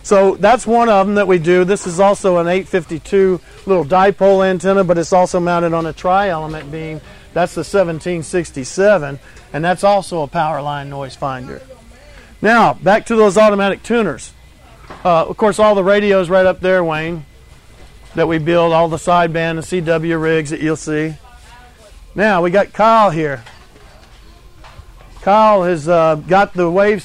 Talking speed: 165 wpm